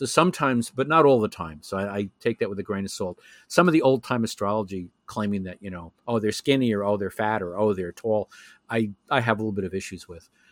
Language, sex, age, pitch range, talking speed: English, male, 50-69, 100-130 Hz, 270 wpm